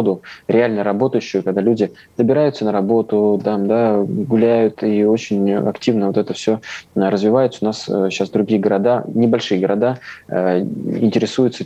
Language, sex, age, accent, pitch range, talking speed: Russian, male, 20-39, native, 100-115 Hz, 130 wpm